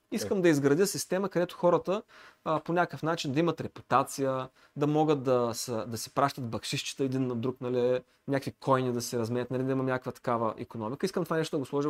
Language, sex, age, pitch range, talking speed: Bulgarian, male, 30-49, 130-185 Hz, 210 wpm